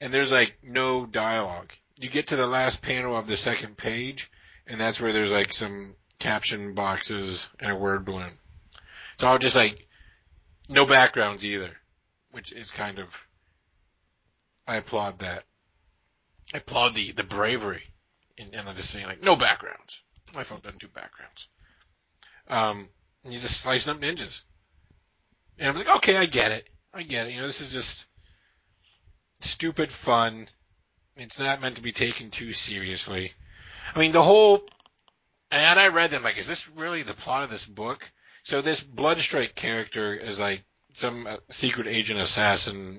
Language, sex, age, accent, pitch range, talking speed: English, male, 30-49, American, 95-120 Hz, 165 wpm